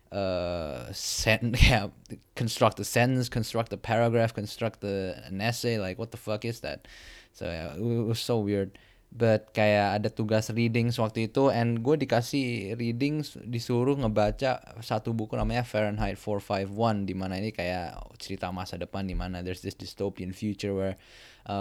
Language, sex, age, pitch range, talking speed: Indonesian, male, 20-39, 100-120 Hz, 160 wpm